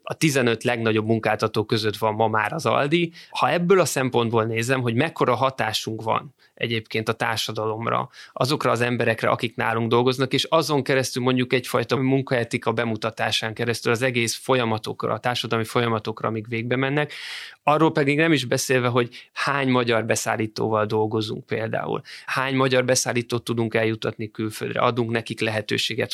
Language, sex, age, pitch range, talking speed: Hungarian, male, 20-39, 110-130 Hz, 150 wpm